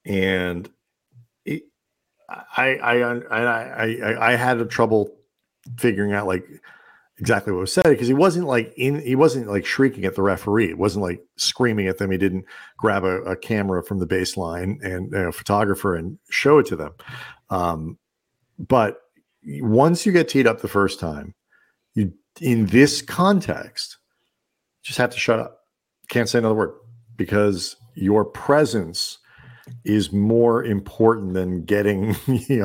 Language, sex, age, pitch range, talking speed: English, male, 50-69, 100-125 Hz, 160 wpm